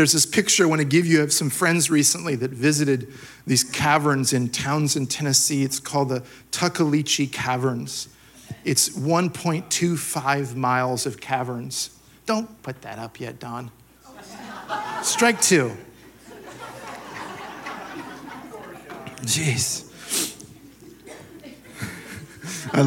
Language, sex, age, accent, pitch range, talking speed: English, male, 40-59, American, 125-165 Hz, 100 wpm